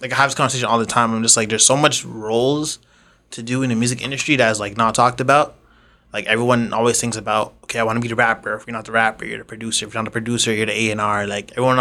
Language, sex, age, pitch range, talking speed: English, male, 20-39, 115-135 Hz, 290 wpm